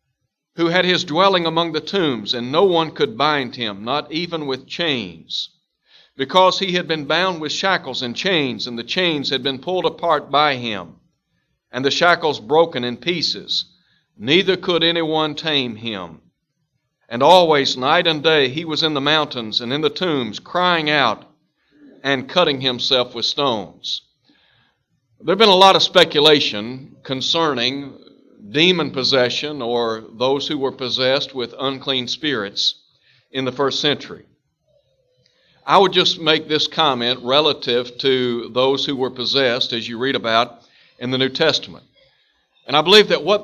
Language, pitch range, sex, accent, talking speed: English, 130-170 Hz, male, American, 155 wpm